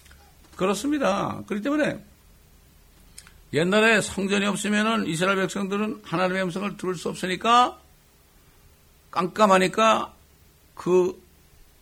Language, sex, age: Korean, male, 60-79